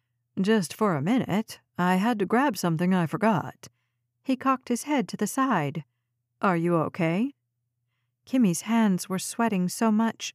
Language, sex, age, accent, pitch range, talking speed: English, female, 50-69, American, 155-230 Hz, 155 wpm